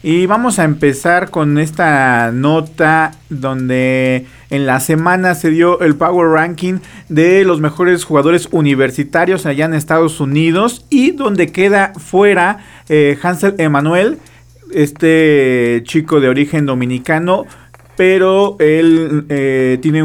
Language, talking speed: Spanish, 125 wpm